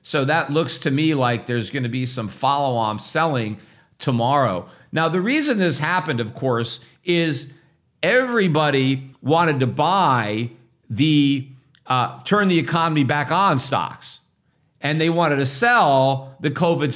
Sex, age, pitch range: male, 50-69, 130-165 Hz